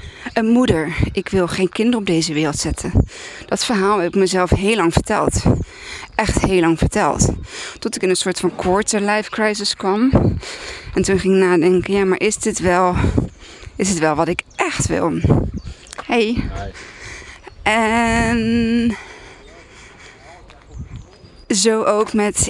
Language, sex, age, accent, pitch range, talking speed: Dutch, female, 20-39, Dutch, 170-210 Hz, 145 wpm